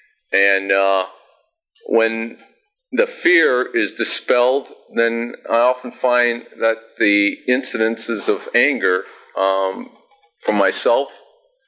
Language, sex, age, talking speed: English, male, 40-59, 100 wpm